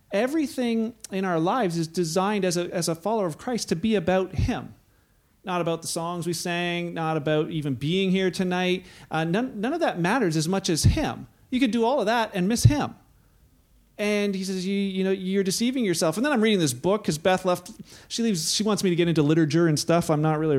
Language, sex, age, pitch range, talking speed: English, male, 40-59, 165-210 Hz, 235 wpm